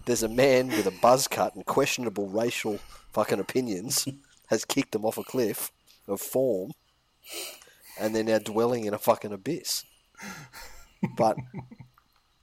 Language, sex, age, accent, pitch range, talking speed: English, male, 30-49, Australian, 100-125 Hz, 140 wpm